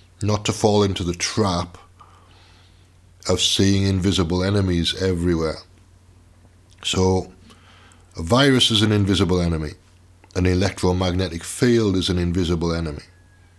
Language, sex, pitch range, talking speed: English, male, 90-105 Hz, 110 wpm